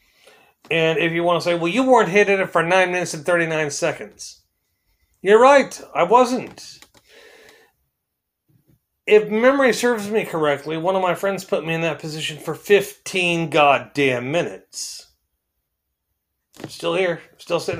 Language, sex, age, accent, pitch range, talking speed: English, male, 40-59, American, 145-185 Hz, 150 wpm